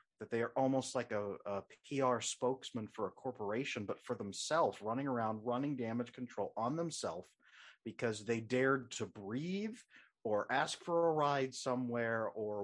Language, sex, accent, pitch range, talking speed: English, male, American, 100-125 Hz, 160 wpm